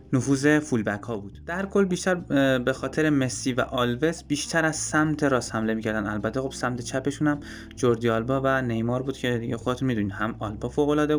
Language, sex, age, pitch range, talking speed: Persian, male, 20-39, 110-135 Hz, 195 wpm